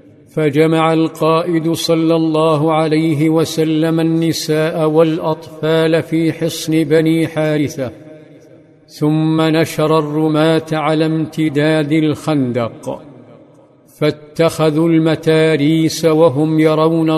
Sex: male